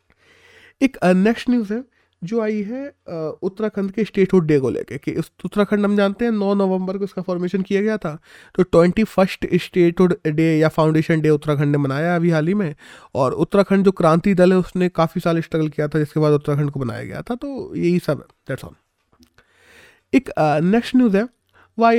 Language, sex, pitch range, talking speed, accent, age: Hindi, male, 155-210 Hz, 200 wpm, native, 20-39